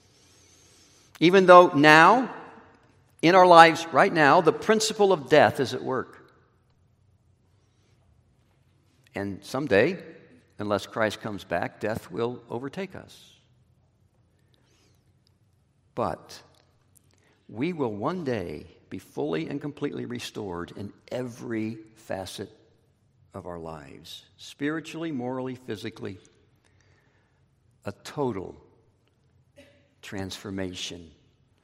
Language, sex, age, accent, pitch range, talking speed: English, male, 60-79, American, 105-140 Hz, 90 wpm